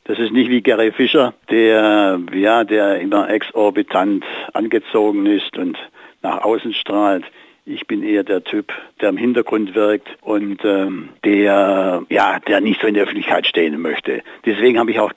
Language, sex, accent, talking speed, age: German, male, German, 165 wpm, 60-79